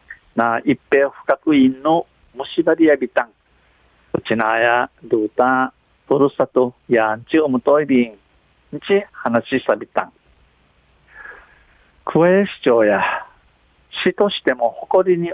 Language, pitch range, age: Japanese, 110-160 Hz, 50-69